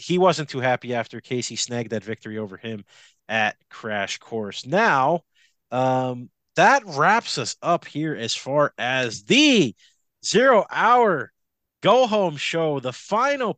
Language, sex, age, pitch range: English, male, 30-49, 120-165 Hz